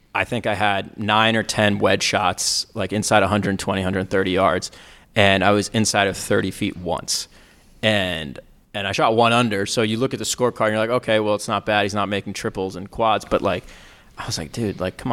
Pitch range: 95-115 Hz